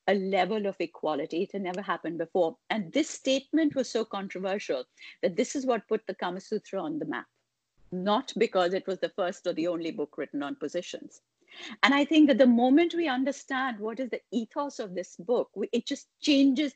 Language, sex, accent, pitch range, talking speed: English, female, Indian, 220-285 Hz, 205 wpm